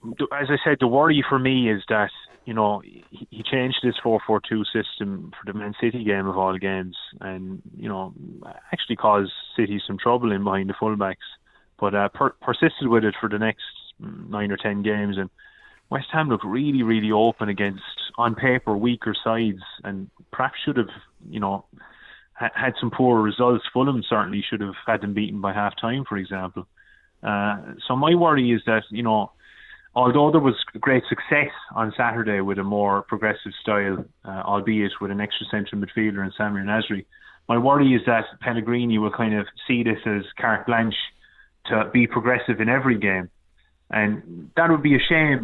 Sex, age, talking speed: male, 20-39, 180 wpm